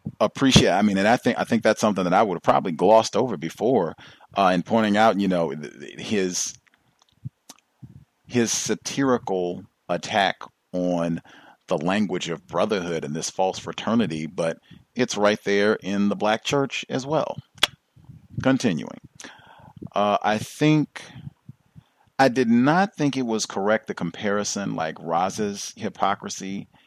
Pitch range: 90-120 Hz